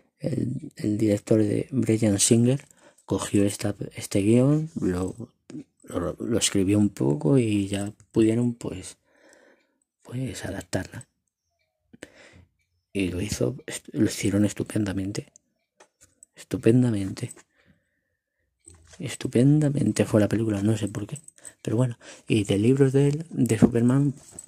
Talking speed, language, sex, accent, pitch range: 105 wpm, Spanish, male, Spanish, 100-115 Hz